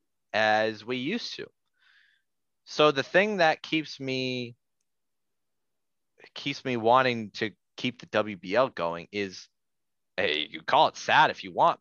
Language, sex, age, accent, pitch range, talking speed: English, male, 30-49, American, 105-140 Hz, 135 wpm